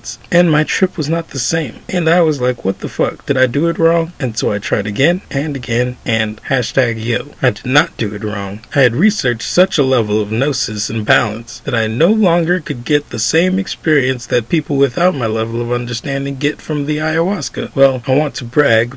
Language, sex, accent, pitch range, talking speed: English, male, American, 120-165 Hz, 220 wpm